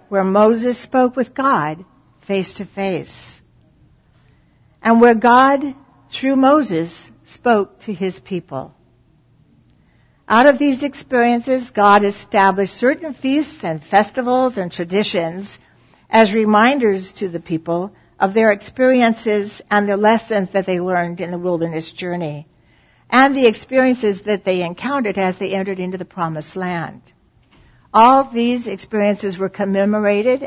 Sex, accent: female, American